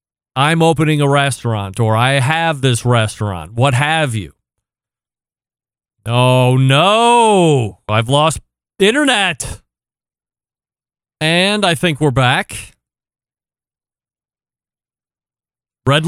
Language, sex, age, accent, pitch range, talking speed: English, male, 40-59, American, 120-150 Hz, 85 wpm